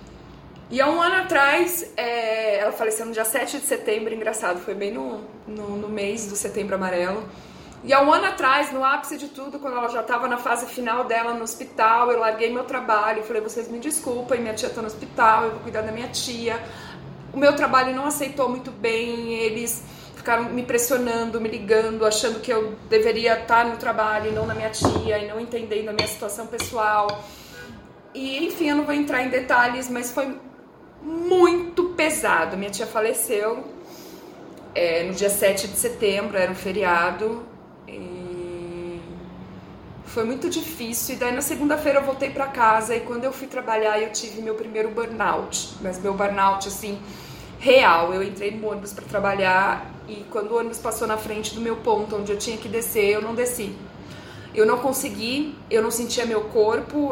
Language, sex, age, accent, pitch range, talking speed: Portuguese, female, 20-39, Brazilian, 215-260 Hz, 185 wpm